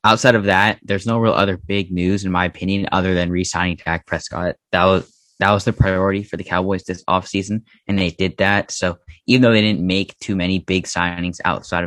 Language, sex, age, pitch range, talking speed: English, male, 10-29, 90-100 Hz, 210 wpm